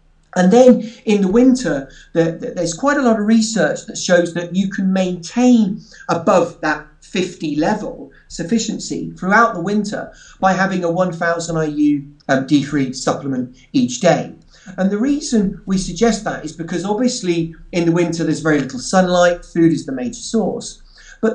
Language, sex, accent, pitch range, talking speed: English, male, British, 155-225 Hz, 155 wpm